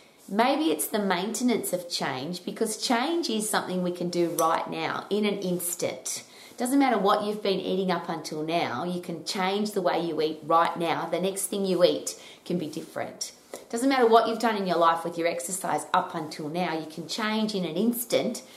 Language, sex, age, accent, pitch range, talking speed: English, female, 30-49, Australian, 160-210 Hz, 205 wpm